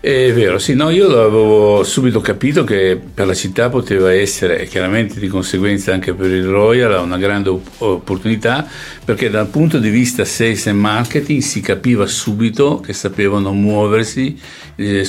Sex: male